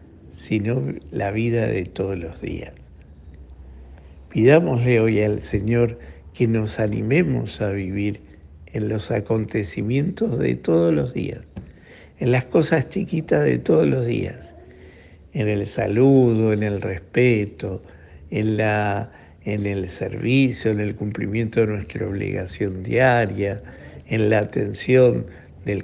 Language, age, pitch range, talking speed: Spanish, 60-79, 85-115 Hz, 120 wpm